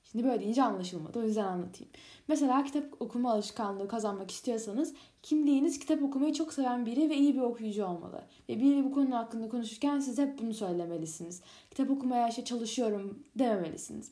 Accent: native